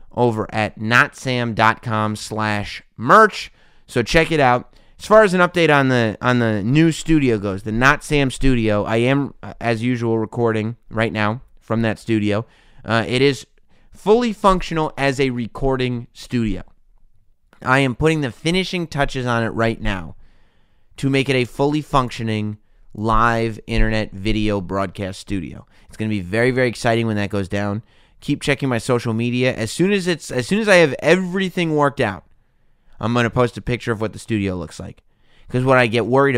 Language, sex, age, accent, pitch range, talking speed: English, male, 30-49, American, 105-135 Hz, 180 wpm